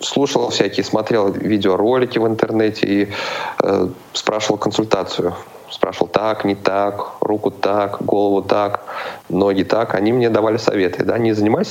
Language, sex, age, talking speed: Russian, male, 20-39, 140 wpm